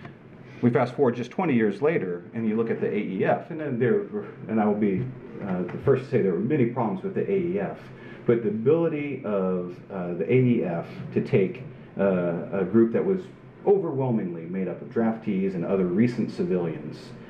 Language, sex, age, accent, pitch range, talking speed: English, male, 40-59, American, 95-145 Hz, 190 wpm